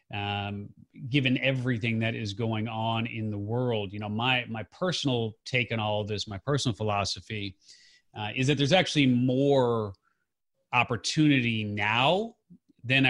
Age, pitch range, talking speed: 30-49, 110-135 Hz, 145 wpm